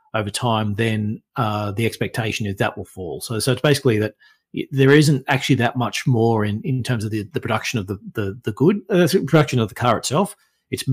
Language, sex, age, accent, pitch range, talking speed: English, male, 30-49, Australian, 105-135 Hz, 230 wpm